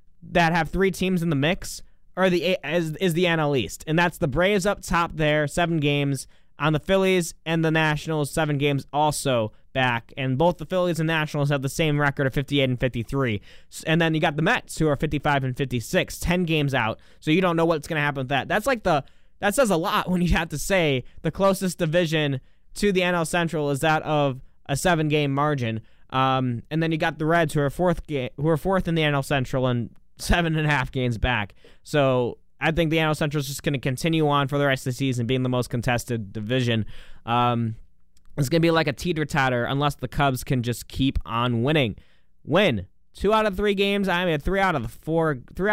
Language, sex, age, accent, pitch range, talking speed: English, male, 20-39, American, 125-165 Hz, 230 wpm